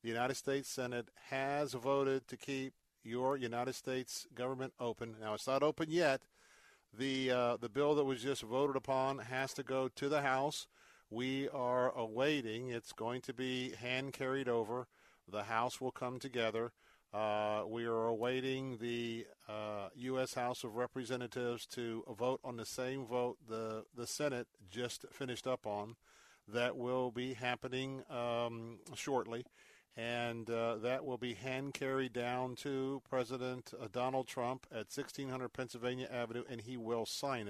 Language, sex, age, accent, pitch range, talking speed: English, male, 50-69, American, 115-130 Hz, 155 wpm